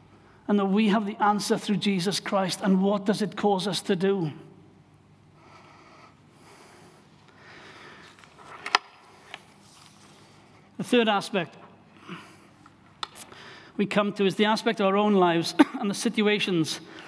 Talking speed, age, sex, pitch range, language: 115 wpm, 60-79, male, 180-205 Hz, English